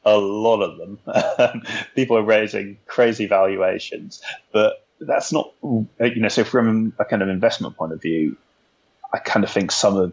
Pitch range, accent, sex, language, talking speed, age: 90-110 Hz, British, male, English, 170 wpm, 30-49